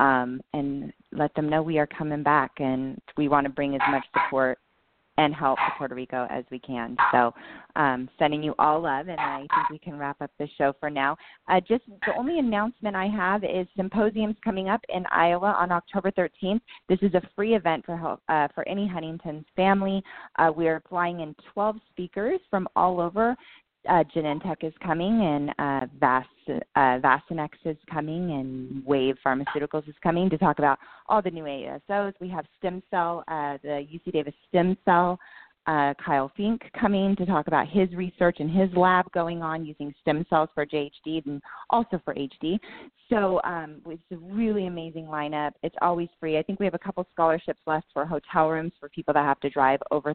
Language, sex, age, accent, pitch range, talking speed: English, female, 20-39, American, 145-185 Hz, 195 wpm